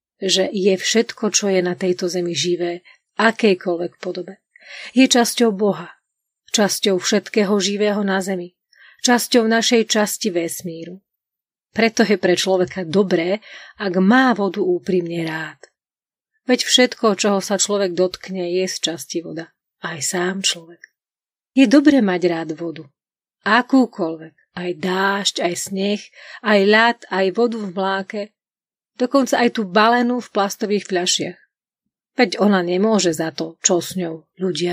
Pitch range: 180-225 Hz